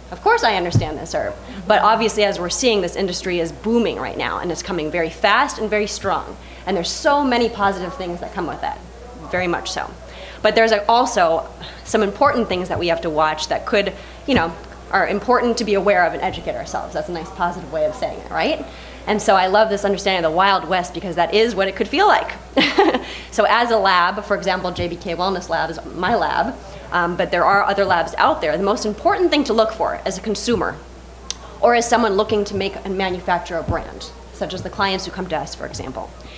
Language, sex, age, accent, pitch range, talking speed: English, female, 20-39, American, 175-220 Hz, 230 wpm